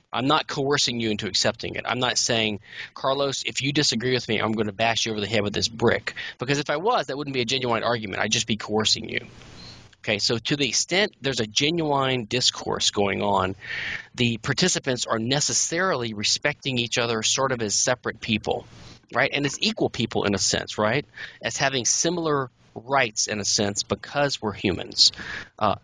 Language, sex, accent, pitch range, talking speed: English, male, American, 105-135 Hz, 195 wpm